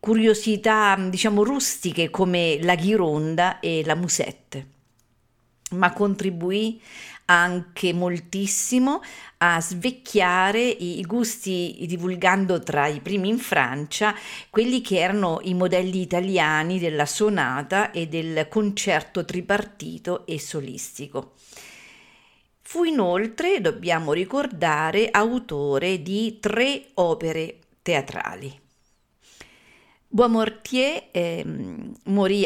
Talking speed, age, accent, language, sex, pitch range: 90 wpm, 50-69, native, Italian, female, 165-220 Hz